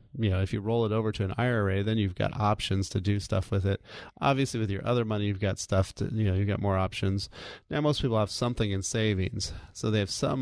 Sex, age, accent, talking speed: male, 30-49, American, 265 wpm